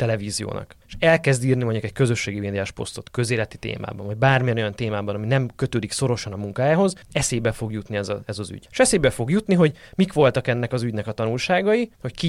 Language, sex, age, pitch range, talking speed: Hungarian, male, 20-39, 105-140 Hz, 210 wpm